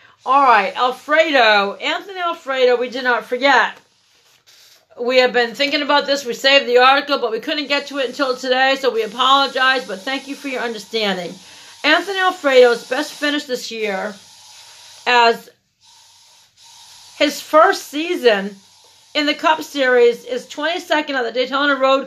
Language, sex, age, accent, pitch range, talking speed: English, female, 40-59, American, 235-290 Hz, 150 wpm